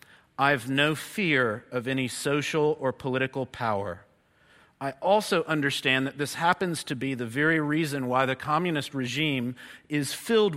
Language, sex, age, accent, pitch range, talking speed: English, male, 50-69, American, 125-165 Hz, 155 wpm